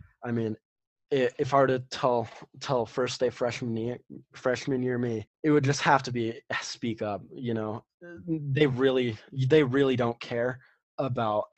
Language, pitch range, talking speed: English, 105-130 Hz, 165 wpm